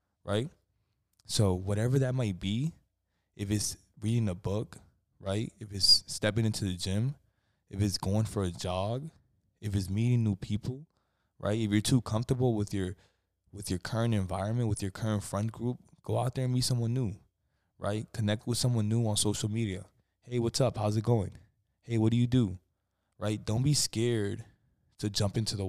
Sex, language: male, English